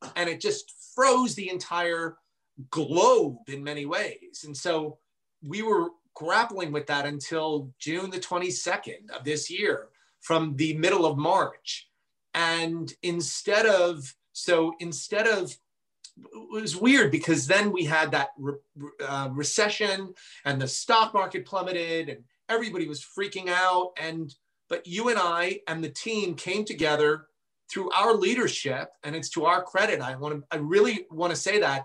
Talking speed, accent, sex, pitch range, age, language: 155 wpm, American, male, 150-195 Hz, 30-49, English